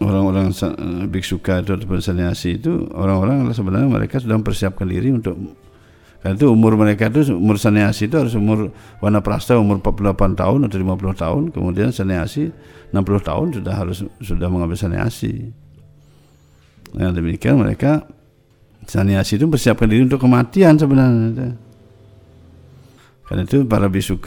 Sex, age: male, 60-79